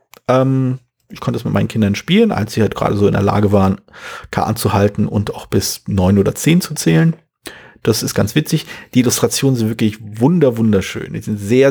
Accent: German